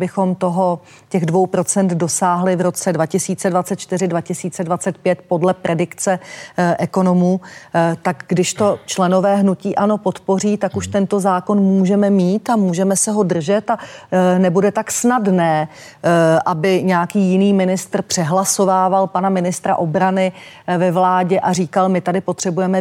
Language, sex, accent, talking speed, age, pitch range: Czech, female, native, 140 wpm, 40-59, 180-200 Hz